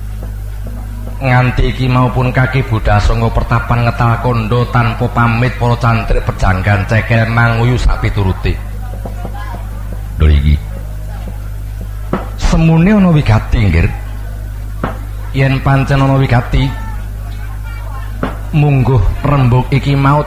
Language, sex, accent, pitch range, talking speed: Indonesian, male, native, 100-125 Hz, 90 wpm